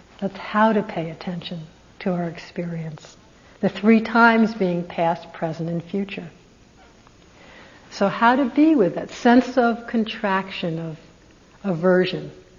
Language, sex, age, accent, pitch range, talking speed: English, female, 60-79, American, 175-235 Hz, 130 wpm